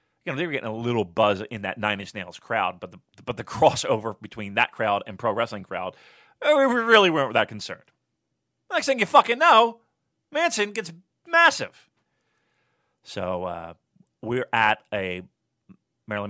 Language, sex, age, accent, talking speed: English, male, 30-49, American, 160 wpm